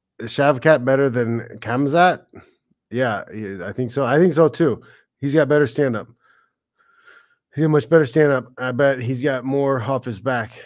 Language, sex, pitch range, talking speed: English, male, 115-145 Hz, 175 wpm